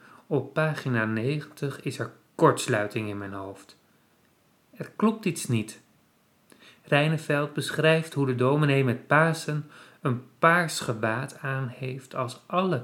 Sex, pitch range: male, 120-150 Hz